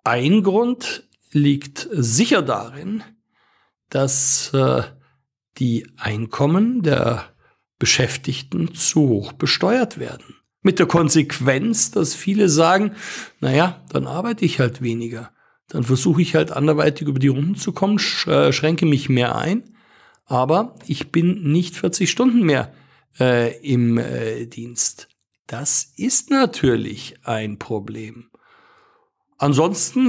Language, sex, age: German, male, 50-69